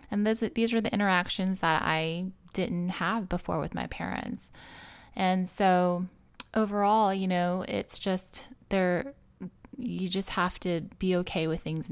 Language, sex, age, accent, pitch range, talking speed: English, female, 20-39, American, 160-190 Hz, 145 wpm